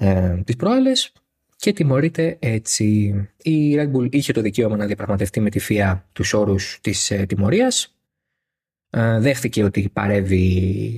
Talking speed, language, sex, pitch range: 135 wpm, Greek, male, 100-140 Hz